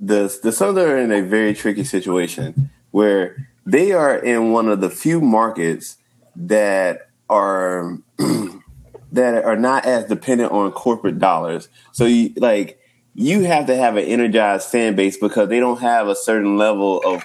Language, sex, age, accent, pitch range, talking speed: English, male, 30-49, American, 95-125 Hz, 155 wpm